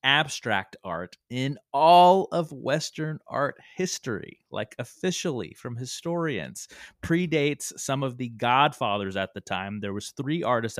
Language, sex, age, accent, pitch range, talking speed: English, male, 30-49, American, 110-160 Hz, 135 wpm